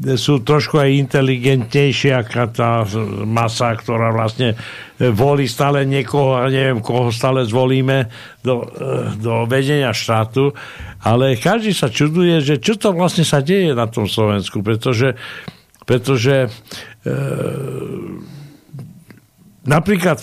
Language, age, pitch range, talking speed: Slovak, 60-79, 110-135 Hz, 115 wpm